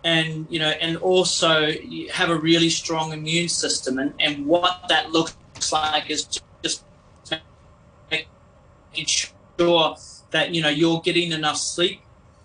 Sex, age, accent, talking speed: male, 30-49, Australian, 150 wpm